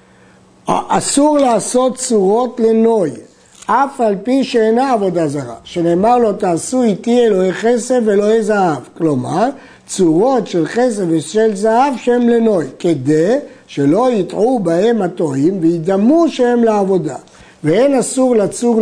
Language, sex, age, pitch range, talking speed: Hebrew, male, 60-79, 175-230 Hz, 120 wpm